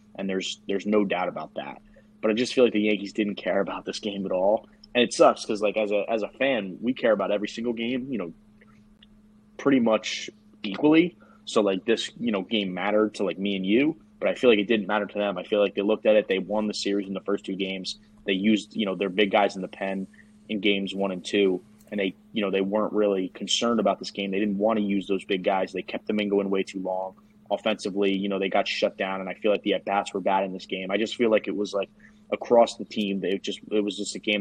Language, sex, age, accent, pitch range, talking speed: English, male, 20-39, American, 100-115 Hz, 270 wpm